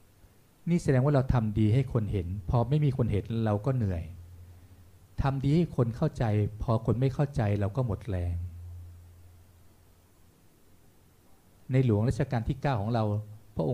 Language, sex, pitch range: Thai, male, 95-130 Hz